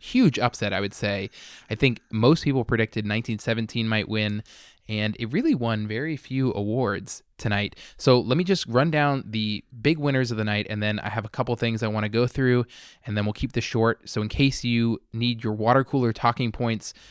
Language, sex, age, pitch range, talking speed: English, male, 20-39, 110-125 Hz, 215 wpm